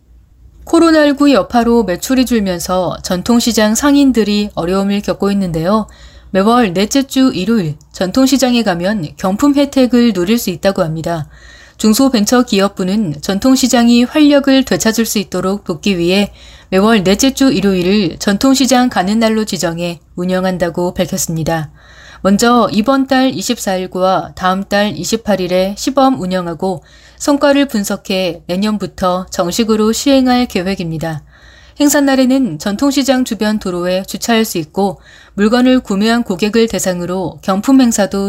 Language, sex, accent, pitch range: Korean, female, native, 185-245 Hz